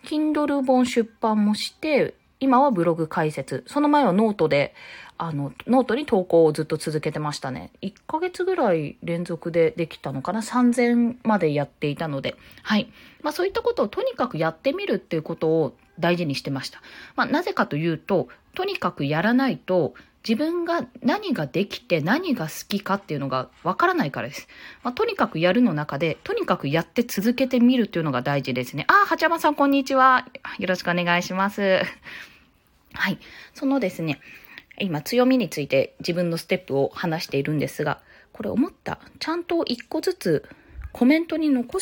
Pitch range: 160-265 Hz